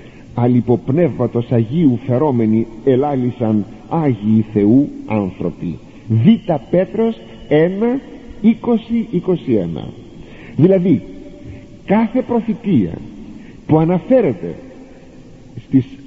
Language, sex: Greek, male